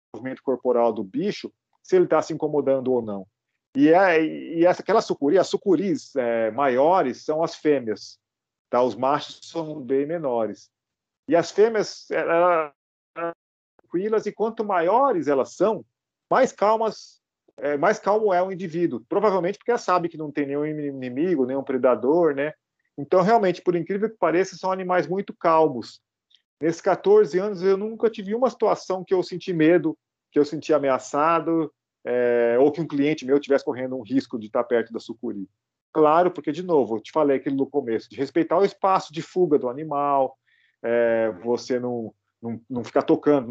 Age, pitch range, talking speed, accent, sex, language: 40-59, 125-180 Hz, 175 wpm, Brazilian, male, Portuguese